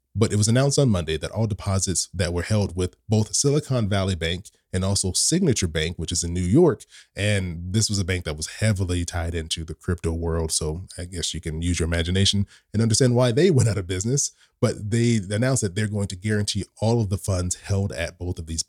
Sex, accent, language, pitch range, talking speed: male, American, English, 90-115 Hz, 230 wpm